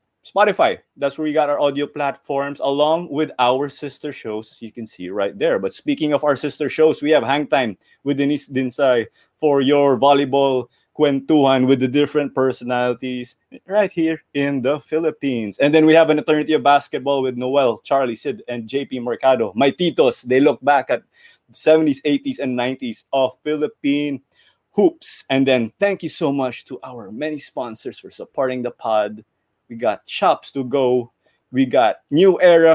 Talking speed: 180 wpm